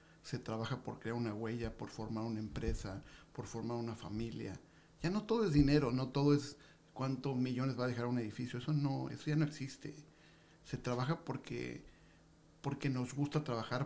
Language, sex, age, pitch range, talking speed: Spanish, male, 50-69, 120-150 Hz, 180 wpm